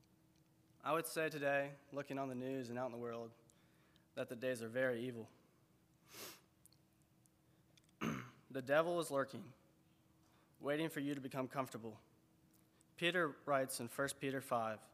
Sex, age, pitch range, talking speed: male, 20-39, 120-145 Hz, 140 wpm